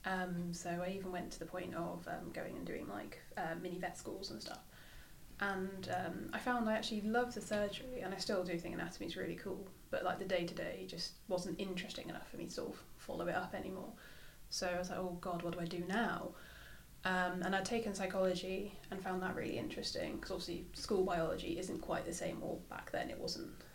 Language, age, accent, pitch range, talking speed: English, 20-39, British, 175-195 Hz, 230 wpm